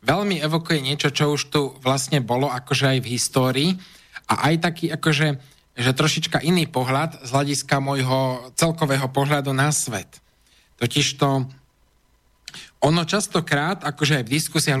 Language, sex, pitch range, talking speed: Slovak, male, 130-165 Hz, 140 wpm